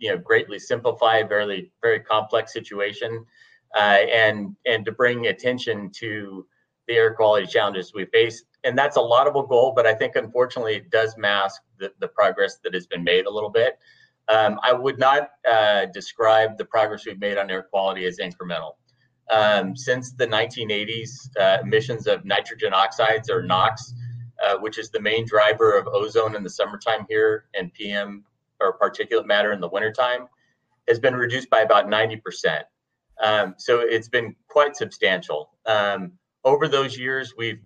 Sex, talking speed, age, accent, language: male, 170 wpm, 30-49, American, English